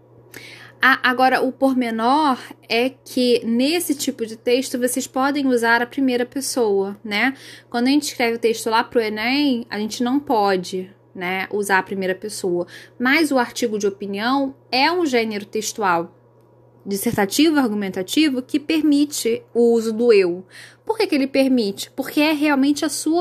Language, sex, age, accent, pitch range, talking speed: Portuguese, female, 10-29, Brazilian, 220-265 Hz, 165 wpm